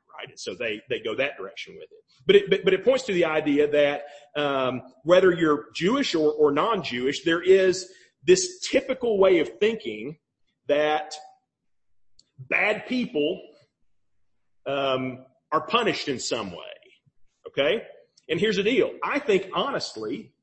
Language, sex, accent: English, male, American